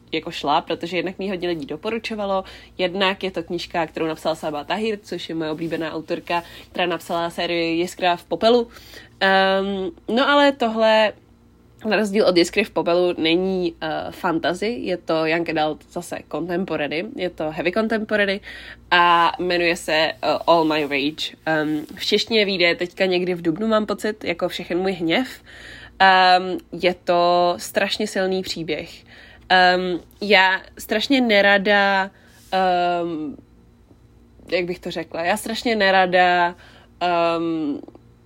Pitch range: 170-195 Hz